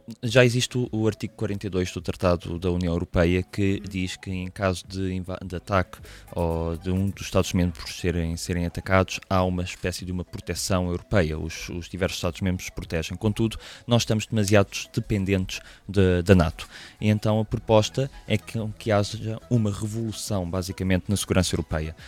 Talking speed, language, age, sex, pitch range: 160 wpm, French, 20-39, male, 95-110 Hz